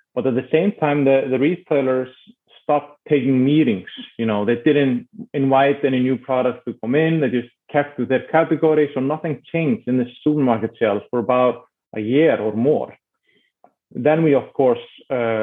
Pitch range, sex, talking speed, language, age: 115-145 Hz, male, 175 wpm, English, 30-49